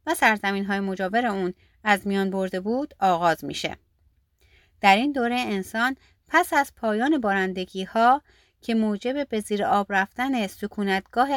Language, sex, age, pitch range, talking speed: Persian, female, 30-49, 190-255 Hz, 135 wpm